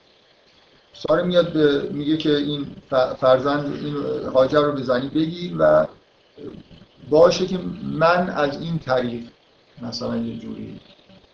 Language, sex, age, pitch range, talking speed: Persian, male, 50-69, 125-150 Hz, 105 wpm